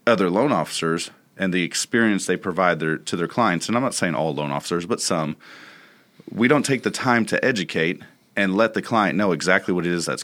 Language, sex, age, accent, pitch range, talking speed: English, male, 30-49, American, 80-100 Hz, 225 wpm